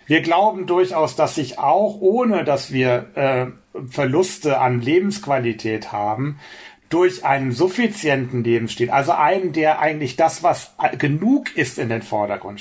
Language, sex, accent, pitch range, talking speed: German, male, German, 125-155 Hz, 140 wpm